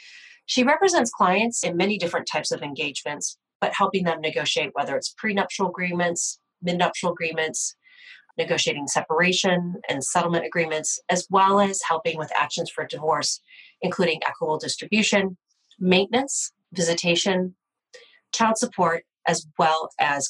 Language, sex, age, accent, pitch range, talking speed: English, female, 30-49, American, 155-200 Hz, 125 wpm